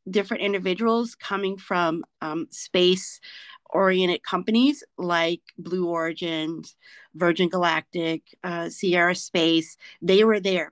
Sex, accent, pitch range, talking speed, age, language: female, American, 175-245 Hz, 100 wpm, 30-49, English